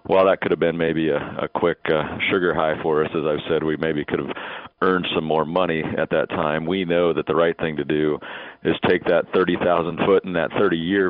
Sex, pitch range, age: male, 80-95 Hz, 40-59